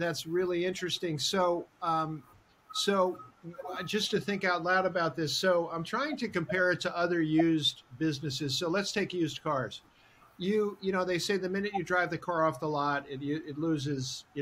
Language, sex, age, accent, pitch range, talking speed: English, male, 50-69, American, 155-195 Hz, 190 wpm